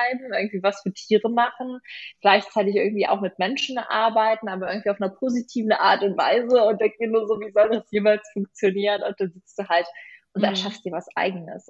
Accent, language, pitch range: German, German, 170-205 Hz